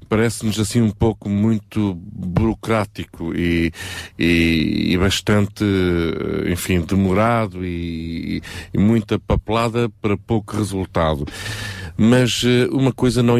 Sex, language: male, Portuguese